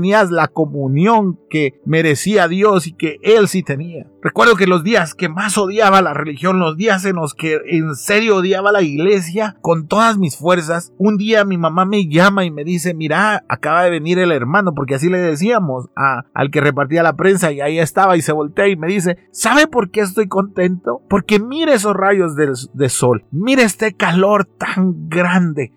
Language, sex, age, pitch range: Spanish, male, 50-69, 165-215 Hz